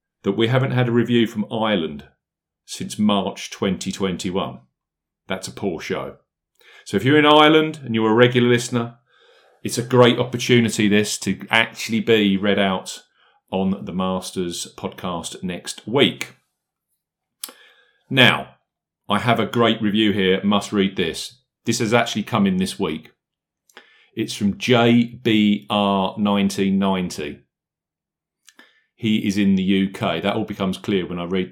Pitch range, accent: 95-125 Hz, British